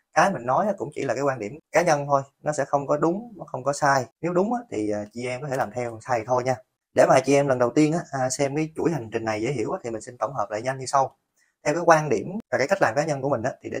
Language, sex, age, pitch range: Vietnamese, male, 20-39, 120-155 Hz